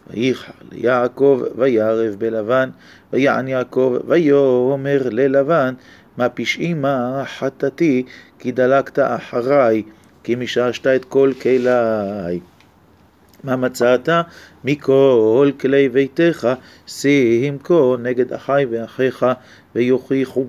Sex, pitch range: male, 120-135 Hz